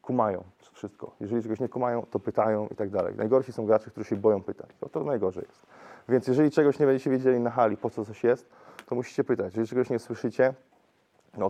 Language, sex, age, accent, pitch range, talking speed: Polish, male, 20-39, native, 110-125 Hz, 220 wpm